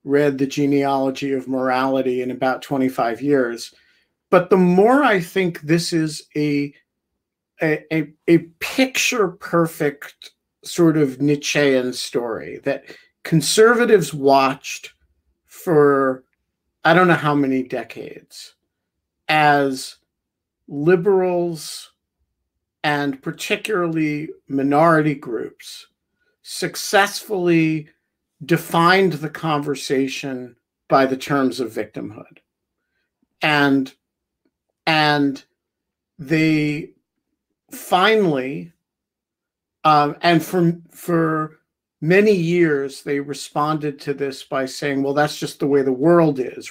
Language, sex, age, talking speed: English, male, 50-69, 95 wpm